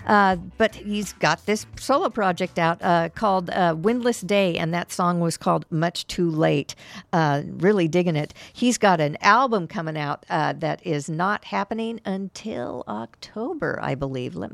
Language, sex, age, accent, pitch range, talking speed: English, female, 50-69, American, 170-215 Hz, 170 wpm